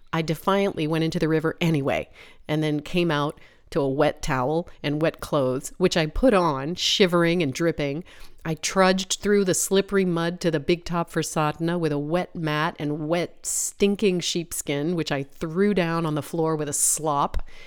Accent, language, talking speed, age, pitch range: American, English, 185 wpm, 30-49, 150-185 Hz